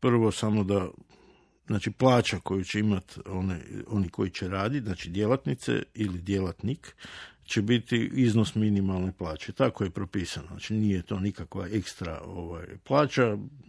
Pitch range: 95-120 Hz